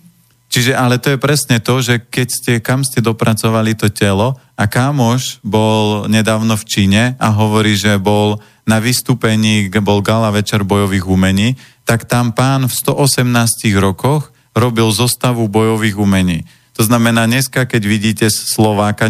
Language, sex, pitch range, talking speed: Slovak, male, 110-145 Hz, 150 wpm